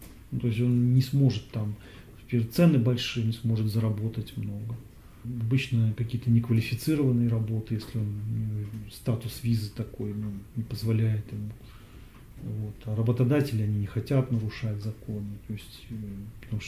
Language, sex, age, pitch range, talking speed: English, male, 40-59, 110-120 Hz, 135 wpm